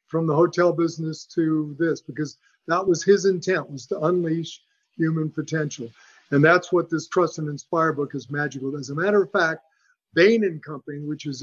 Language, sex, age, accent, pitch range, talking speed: English, male, 50-69, American, 145-185 Hz, 190 wpm